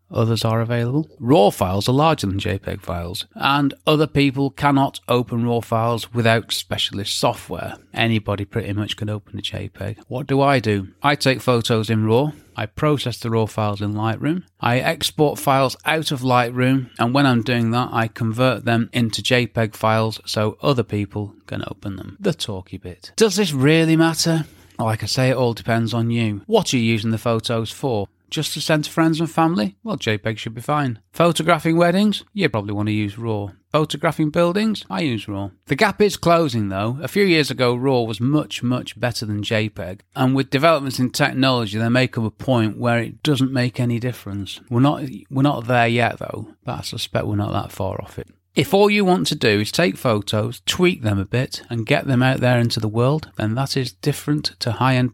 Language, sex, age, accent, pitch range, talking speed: English, male, 30-49, British, 110-140 Hz, 205 wpm